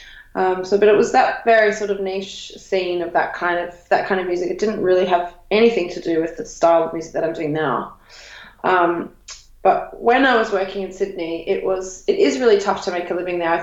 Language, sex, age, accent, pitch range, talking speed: English, female, 20-39, Australian, 175-200 Hz, 240 wpm